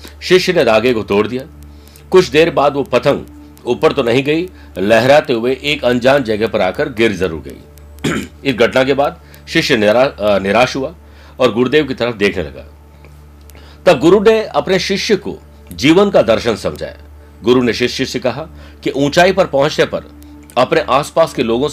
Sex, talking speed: male, 170 wpm